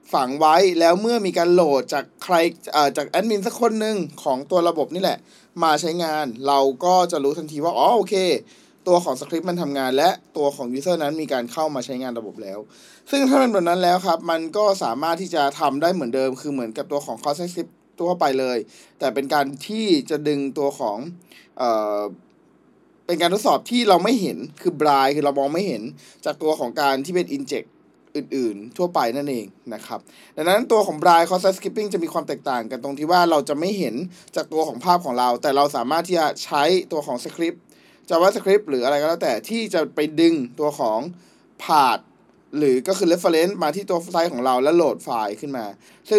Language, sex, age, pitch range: Thai, male, 20-39, 145-180 Hz